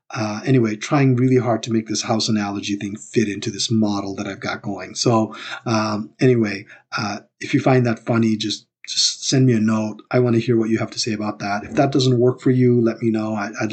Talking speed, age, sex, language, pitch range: 240 wpm, 30-49, male, English, 110-130 Hz